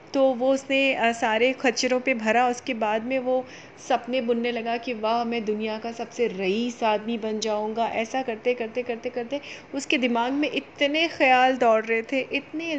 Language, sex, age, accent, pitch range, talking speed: Hindi, female, 30-49, native, 220-260 Hz, 180 wpm